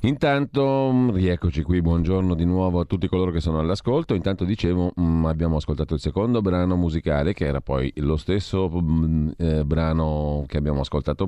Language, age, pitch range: Italian, 40-59, 75-95 Hz